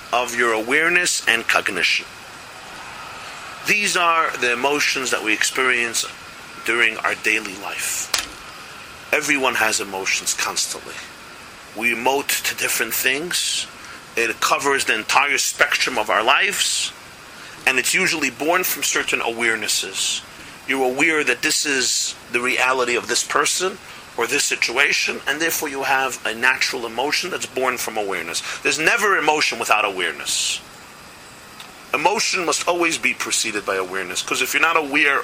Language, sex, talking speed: English, male, 140 wpm